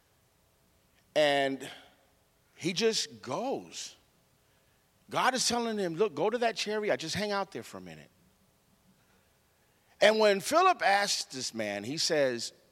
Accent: American